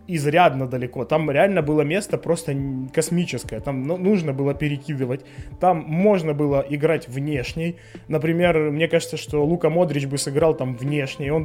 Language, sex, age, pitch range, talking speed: Ukrainian, male, 20-39, 140-170 Hz, 145 wpm